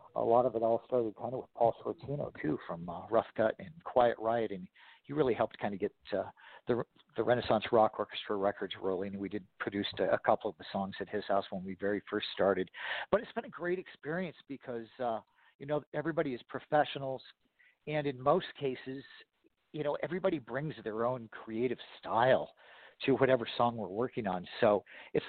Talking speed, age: 200 wpm, 50-69